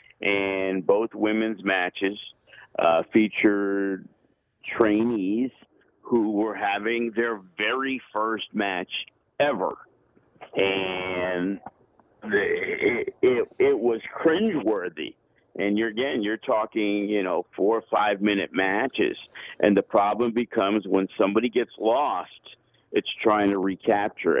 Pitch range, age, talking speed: 95-110 Hz, 50-69, 110 wpm